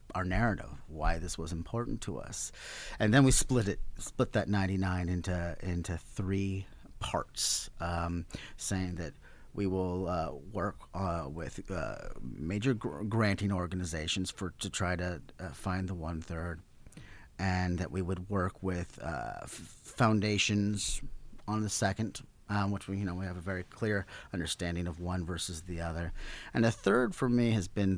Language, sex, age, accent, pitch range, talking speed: English, male, 40-59, American, 90-110 Hz, 165 wpm